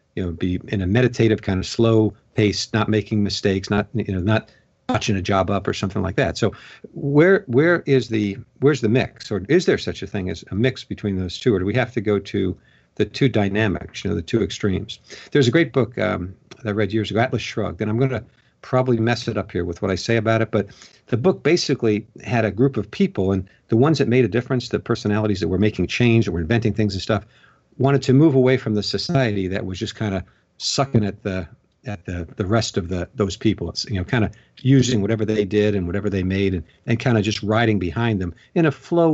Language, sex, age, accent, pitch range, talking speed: English, male, 50-69, American, 100-125 Hz, 250 wpm